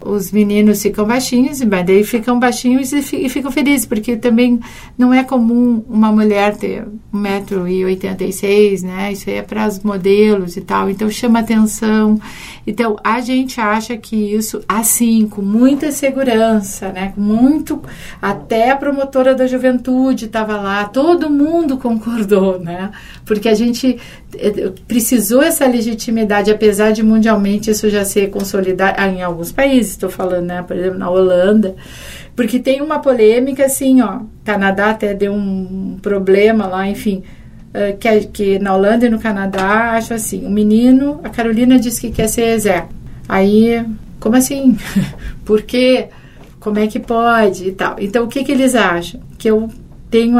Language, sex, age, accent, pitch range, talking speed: Portuguese, female, 50-69, Brazilian, 200-245 Hz, 150 wpm